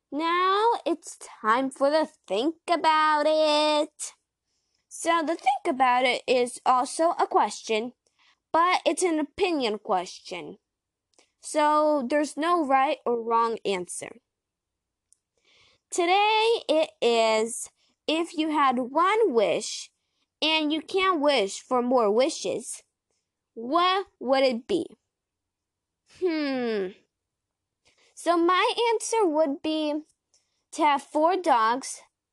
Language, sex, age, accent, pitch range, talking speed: English, female, 10-29, American, 260-365 Hz, 110 wpm